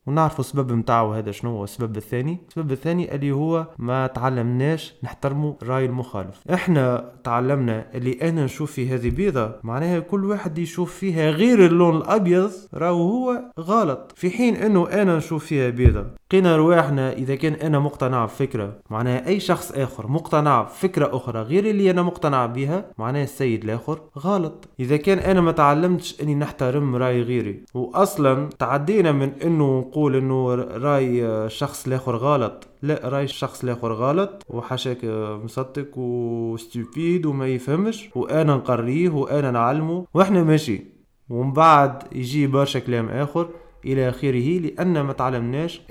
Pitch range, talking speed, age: 125-165 Hz, 145 wpm, 20-39